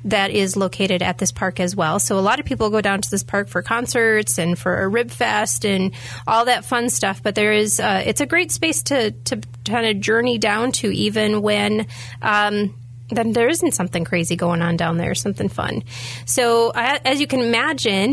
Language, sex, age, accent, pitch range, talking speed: English, female, 30-49, American, 180-225 Hz, 210 wpm